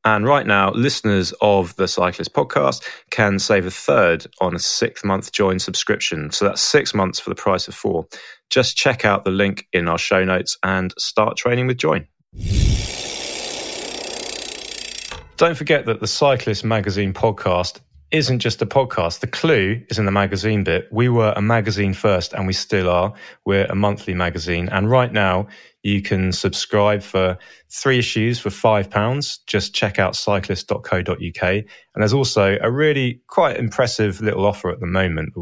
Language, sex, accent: English, male, British